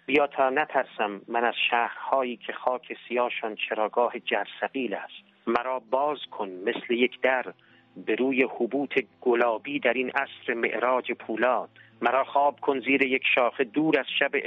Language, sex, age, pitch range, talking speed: Persian, male, 50-69, 120-145 Hz, 150 wpm